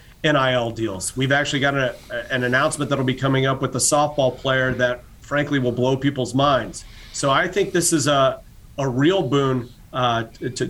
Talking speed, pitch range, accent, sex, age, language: 185 wpm, 125-150 Hz, American, male, 40-59, English